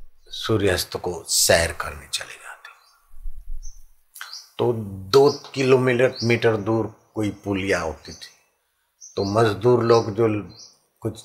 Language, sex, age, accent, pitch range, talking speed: Hindi, male, 50-69, native, 85-120 Hz, 105 wpm